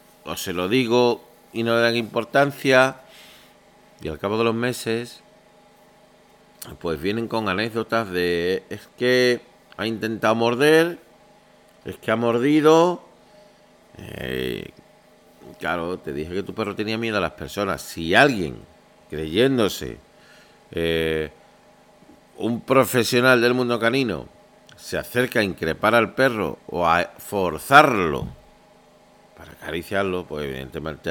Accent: Spanish